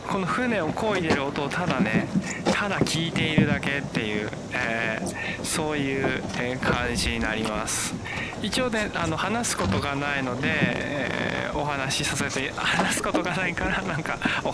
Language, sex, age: Japanese, male, 20-39